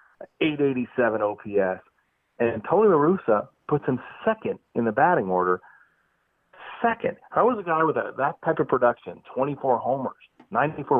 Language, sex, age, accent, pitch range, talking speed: English, male, 40-59, American, 105-140 Hz, 140 wpm